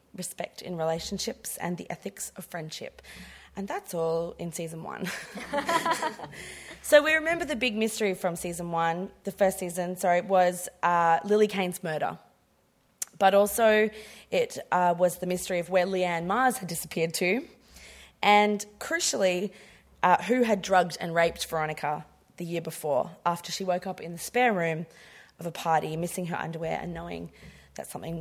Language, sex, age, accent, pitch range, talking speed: English, female, 20-39, Australian, 165-215 Hz, 160 wpm